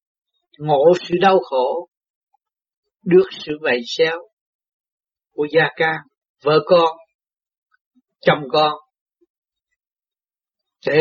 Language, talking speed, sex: Vietnamese, 85 wpm, male